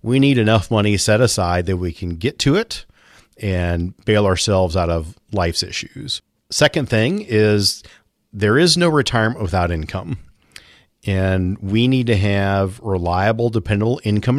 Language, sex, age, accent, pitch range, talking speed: English, male, 40-59, American, 95-115 Hz, 150 wpm